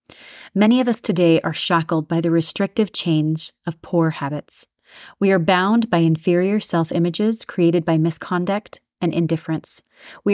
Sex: female